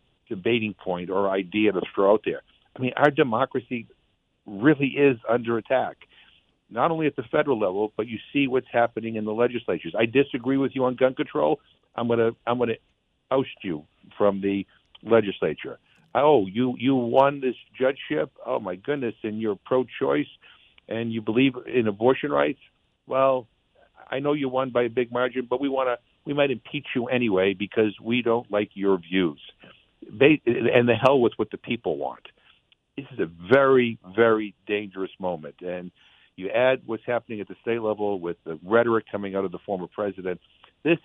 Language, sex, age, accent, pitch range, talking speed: English, male, 50-69, American, 100-130 Hz, 180 wpm